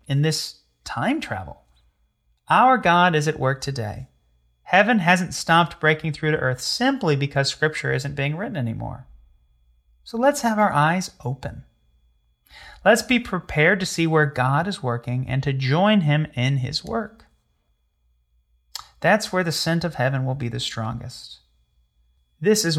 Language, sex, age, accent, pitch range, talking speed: English, male, 30-49, American, 115-160 Hz, 155 wpm